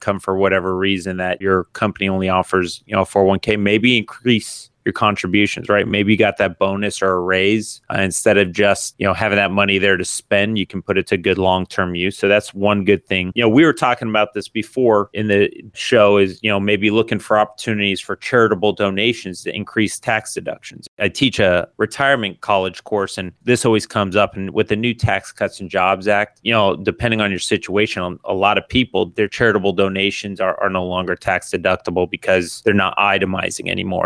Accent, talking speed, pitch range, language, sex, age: American, 210 wpm, 95-105 Hz, English, male, 30-49